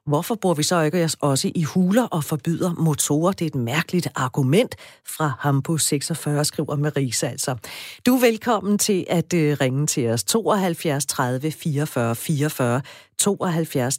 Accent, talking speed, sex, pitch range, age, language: native, 155 wpm, female, 140-185 Hz, 40-59, Danish